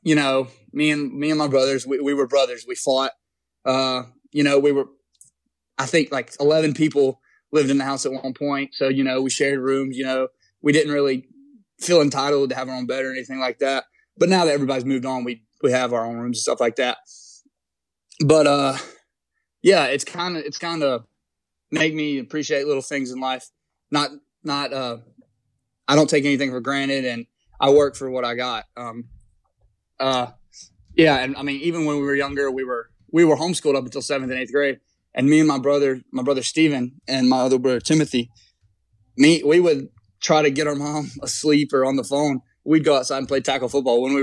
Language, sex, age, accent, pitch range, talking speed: English, male, 20-39, American, 130-150 Hz, 215 wpm